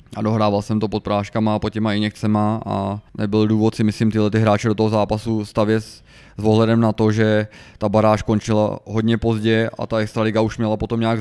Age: 20-39